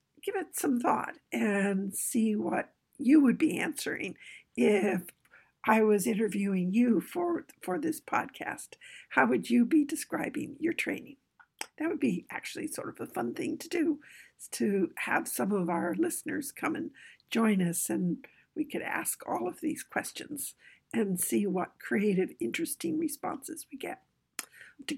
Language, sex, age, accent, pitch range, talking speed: English, female, 60-79, American, 195-315 Hz, 155 wpm